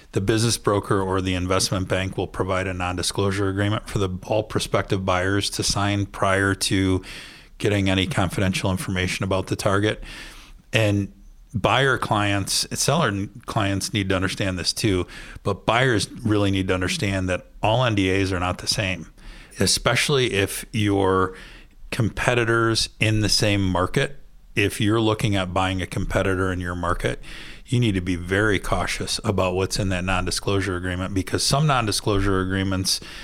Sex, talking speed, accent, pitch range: male, 155 wpm, American, 95-105 Hz